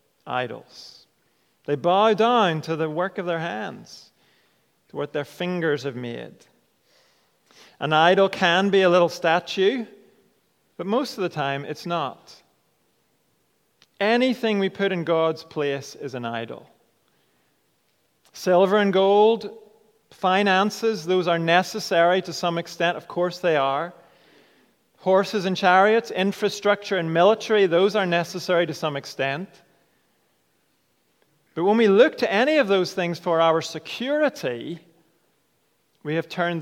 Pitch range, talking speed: 160-205 Hz, 130 wpm